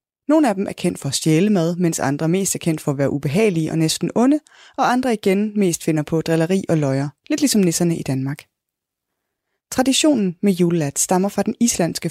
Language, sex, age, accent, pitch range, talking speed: Danish, female, 20-39, native, 155-210 Hz, 210 wpm